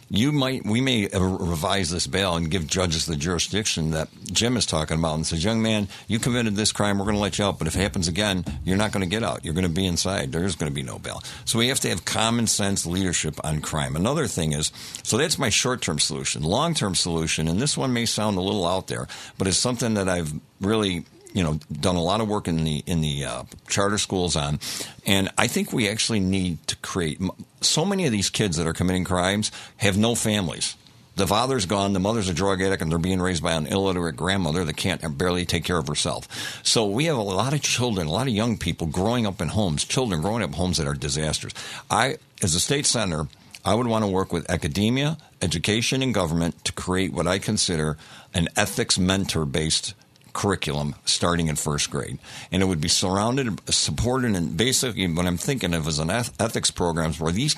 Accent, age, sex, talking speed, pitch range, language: American, 60-79, male, 225 wpm, 85-110 Hz, English